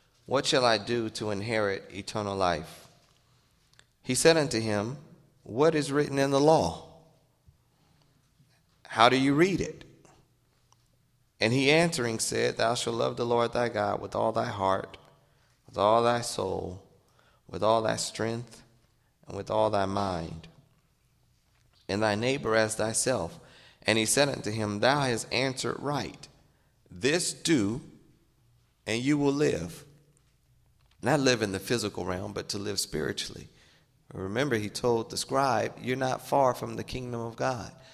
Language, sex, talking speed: English, male, 150 wpm